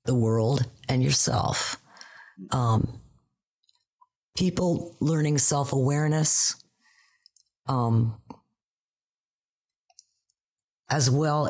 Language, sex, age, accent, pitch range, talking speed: English, female, 40-59, American, 125-160 Hz, 55 wpm